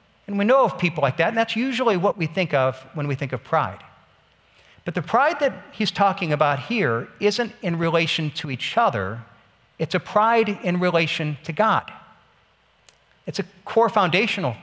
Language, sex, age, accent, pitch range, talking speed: English, male, 50-69, American, 155-210 Hz, 180 wpm